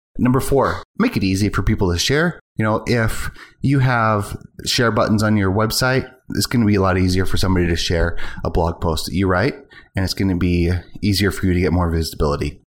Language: English